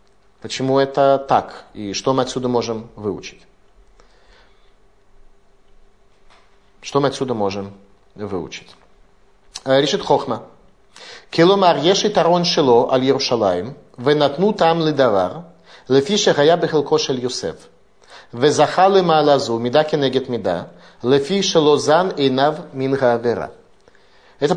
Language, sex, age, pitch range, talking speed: Russian, male, 30-49, 120-160 Hz, 40 wpm